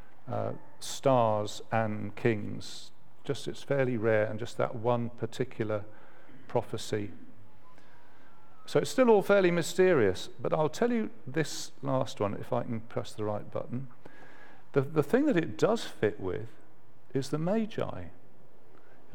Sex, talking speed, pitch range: male, 145 wpm, 120-170 Hz